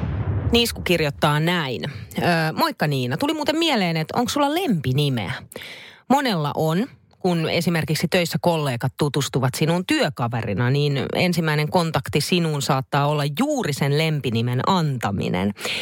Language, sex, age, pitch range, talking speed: Finnish, female, 30-49, 130-185 Hz, 120 wpm